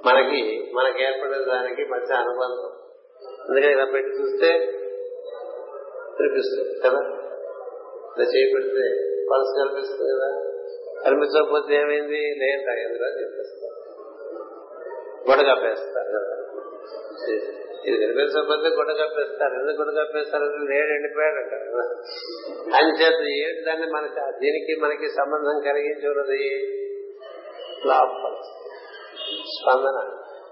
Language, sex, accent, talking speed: Telugu, male, native, 90 wpm